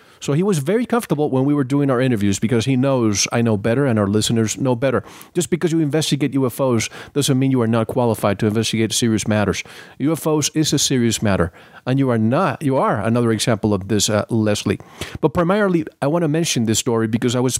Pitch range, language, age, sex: 115-145 Hz, English, 40-59, male